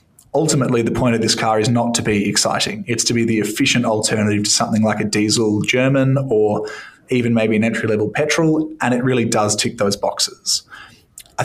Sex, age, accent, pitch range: male, 20-39, Australian, 110-130 Hz